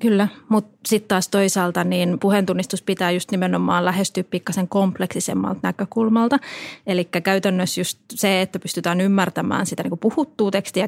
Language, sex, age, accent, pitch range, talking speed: Finnish, female, 20-39, native, 190-230 Hz, 140 wpm